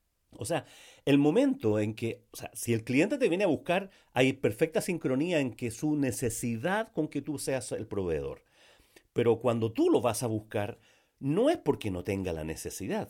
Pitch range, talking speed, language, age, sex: 115-175 Hz, 190 wpm, Spanish, 40-59, male